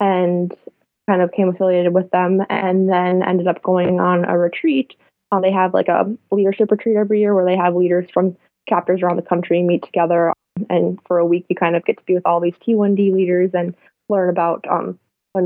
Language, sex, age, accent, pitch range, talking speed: English, female, 20-39, American, 175-195 Hz, 205 wpm